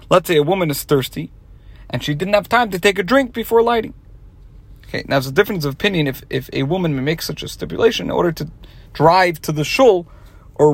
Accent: American